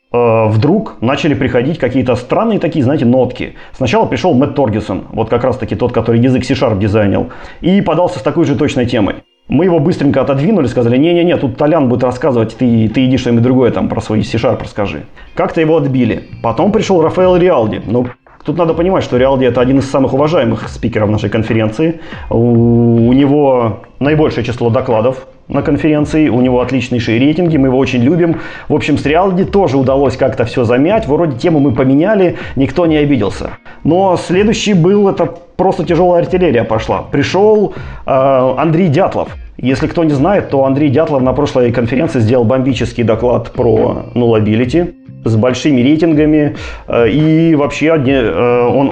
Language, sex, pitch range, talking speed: Russian, male, 120-160 Hz, 160 wpm